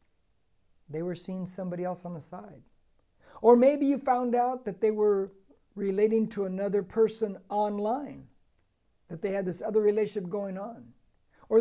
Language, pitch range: English, 135-210 Hz